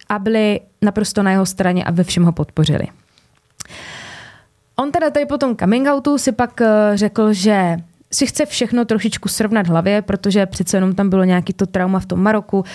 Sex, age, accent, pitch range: female, 20-39, native, 180-220 Hz